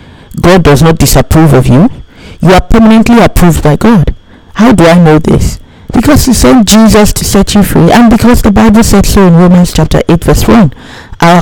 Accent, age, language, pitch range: Nigerian, 50-69, English, 135-195 Hz